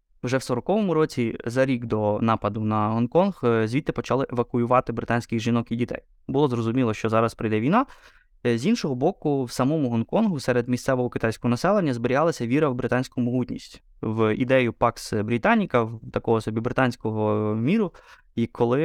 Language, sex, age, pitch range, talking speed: Ukrainian, male, 20-39, 115-135 Hz, 150 wpm